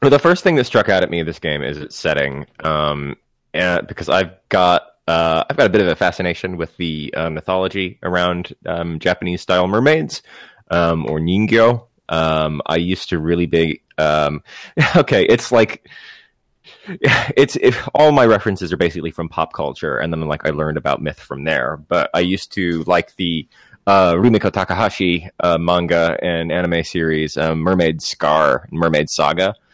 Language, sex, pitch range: English, male, 80-95 Hz